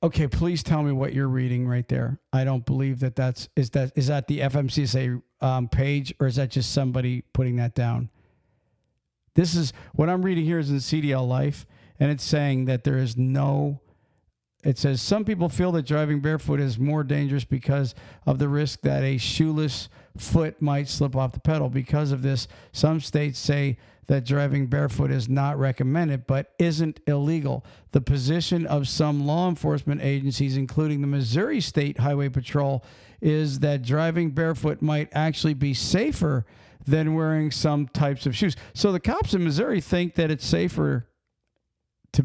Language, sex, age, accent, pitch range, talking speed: English, male, 50-69, American, 130-155 Hz, 175 wpm